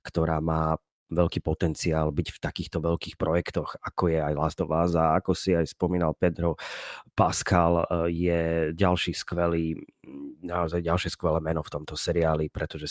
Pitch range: 80-85 Hz